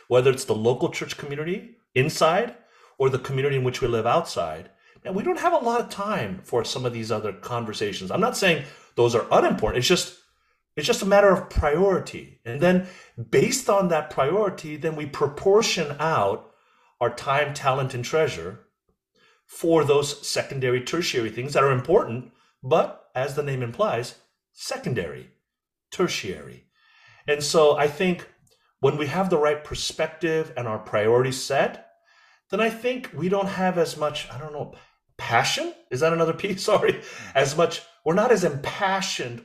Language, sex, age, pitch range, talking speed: English, male, 40-59, 125-175 Hz, 165 wpm